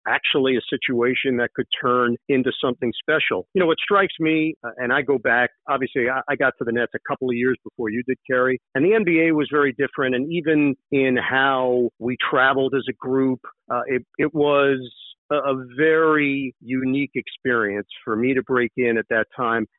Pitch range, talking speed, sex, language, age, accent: 125-155 Hz, 200 wpm, male, English, 50-69, American